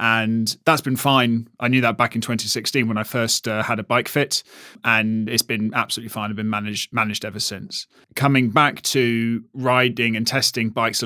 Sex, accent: male, British